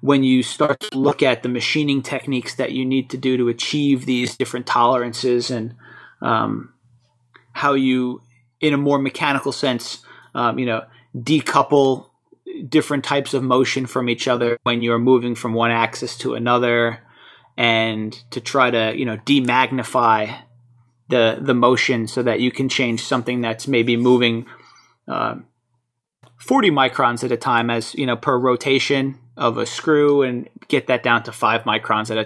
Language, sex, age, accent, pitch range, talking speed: English, male, 30-49, American, 115-135 Hz, 165 wpm